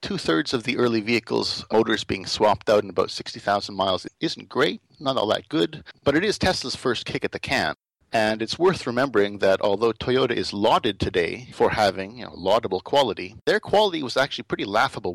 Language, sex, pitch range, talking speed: English, male, 105-130 Hz, 200 wpm